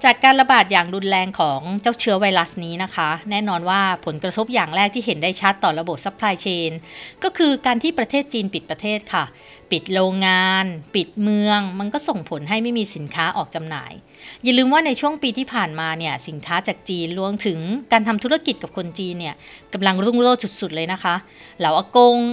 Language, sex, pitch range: Thai, female, 175-235 Hz